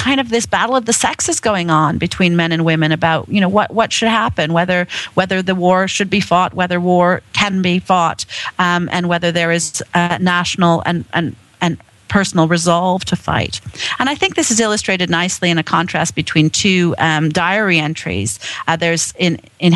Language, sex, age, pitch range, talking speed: English, female, 40-59, 155-190 Hz, 195 wpm